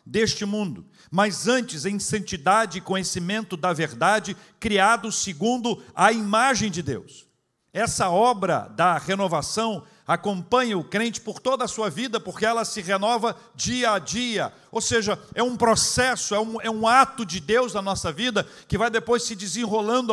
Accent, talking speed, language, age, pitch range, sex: Brazilian, 160 wpm, Portuguese, 50-69, 145-220 Hz, male